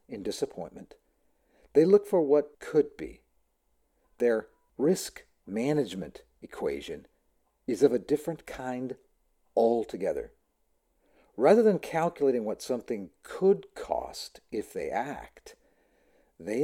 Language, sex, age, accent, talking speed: English, male, 50-69, American, 105 wpm